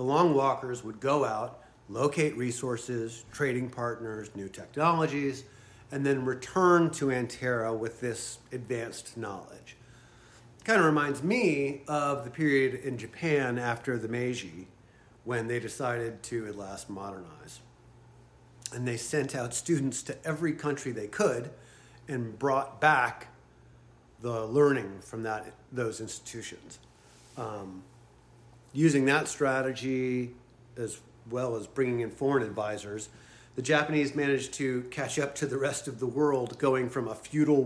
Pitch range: 115-140 Hz